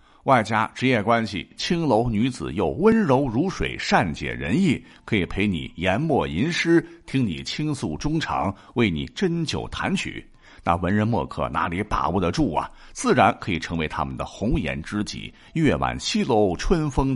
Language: Chinese